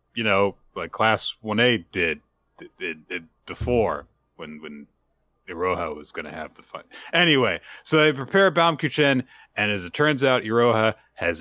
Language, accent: English, American